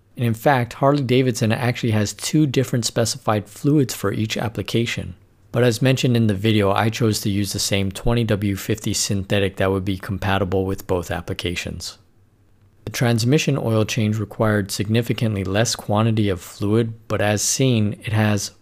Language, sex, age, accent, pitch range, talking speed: English, male, 50-69, American, 95-115 Hz, 155 wpm